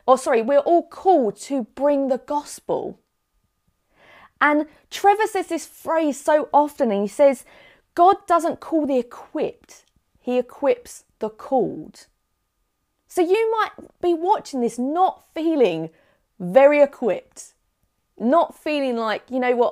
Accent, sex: British, female